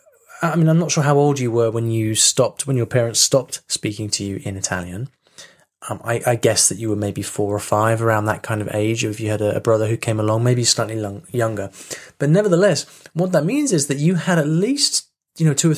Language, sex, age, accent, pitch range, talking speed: English, male, 20-39, British, 110-145 Hz, 245 wpm